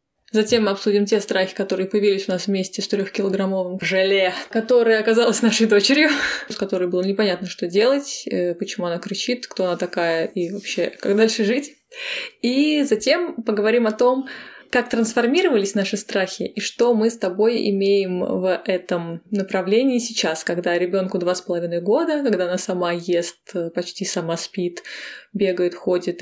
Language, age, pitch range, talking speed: Russian, 20-39, 185-225 Hz, 155 wpm